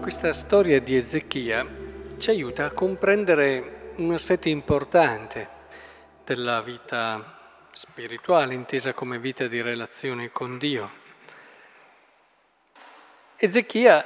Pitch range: 130-170 Hz